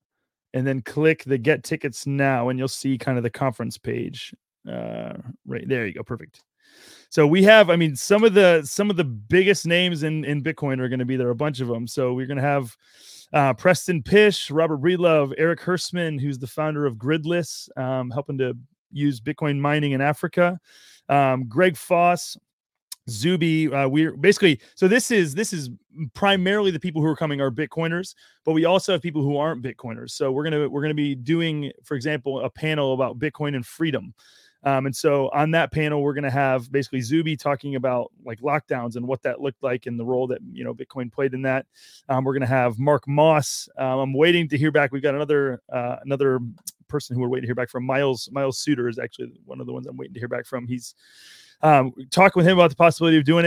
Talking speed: 220 wpm